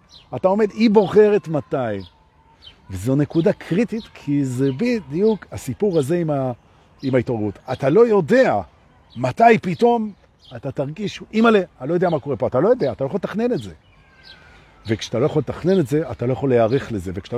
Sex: male